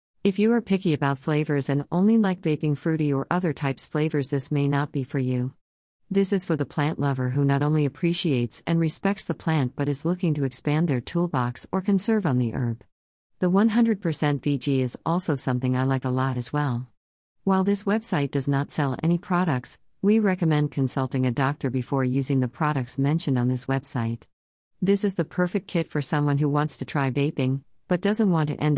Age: 50-69